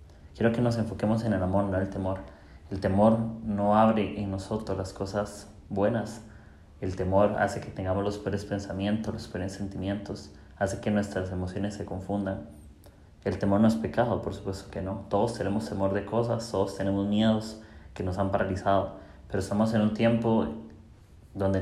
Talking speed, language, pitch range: 180 wpm, Spanish, 95-110 Hz